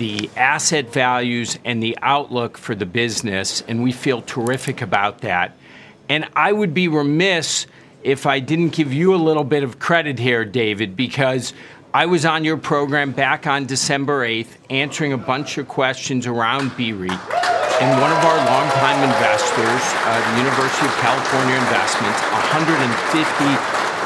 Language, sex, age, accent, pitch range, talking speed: English, male, 50-69, American, 125-150 Hz, 155 wpm